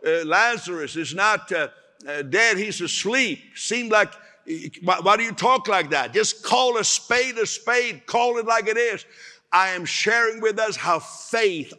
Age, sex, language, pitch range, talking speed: 60-79, male, English, 155-220 Hz, 185 wpm